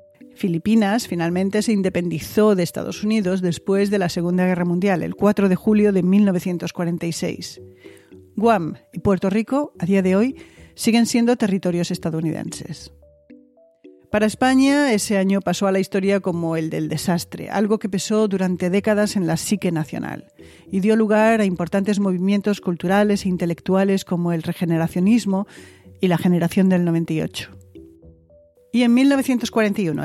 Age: 40-59